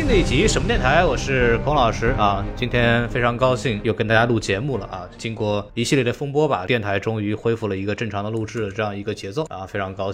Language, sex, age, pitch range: Chinese, male, 20-39, 115-155 Hz